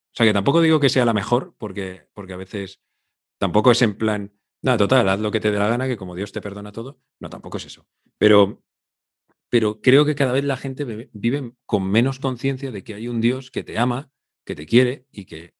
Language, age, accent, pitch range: Spanish, 40-59, Spanish, 95-125 Hz